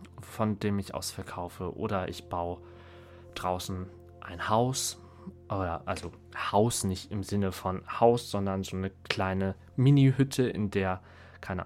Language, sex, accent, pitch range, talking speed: German, male, German, 90-115 Hz, 130 wpm